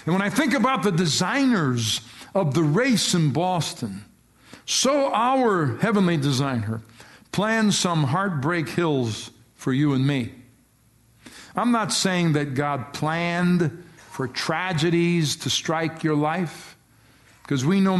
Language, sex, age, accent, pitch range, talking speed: English, male, 50-69, American, 140-195 Hz, 130 wpm